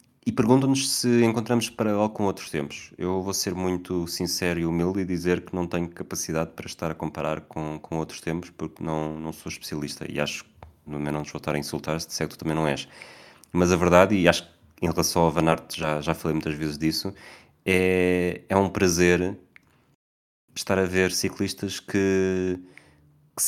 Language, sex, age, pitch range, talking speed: Portuguese, male, 20-39, 80-95 Hz, 190 wpm